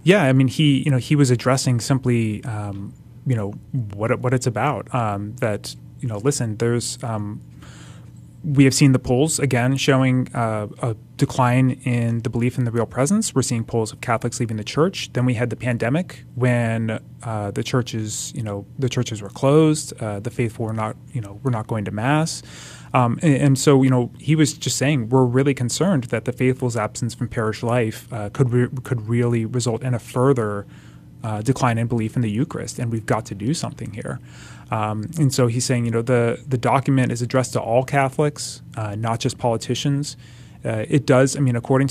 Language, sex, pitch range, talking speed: English, male, 110-135 Hz, 210 wpm